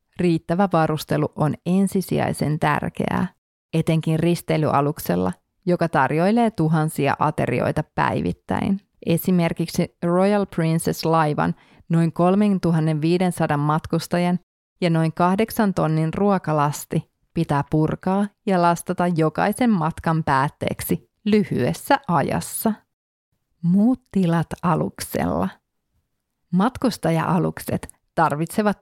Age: 30-49